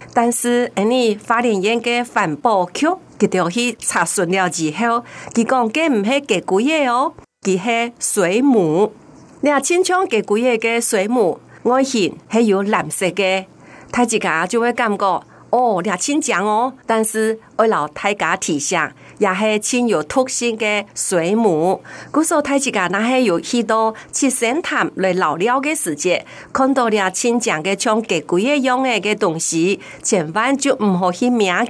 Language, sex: Chinese, female